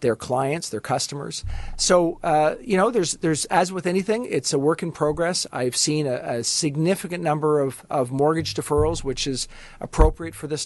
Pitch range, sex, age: 135-155 Hz, male, 50-69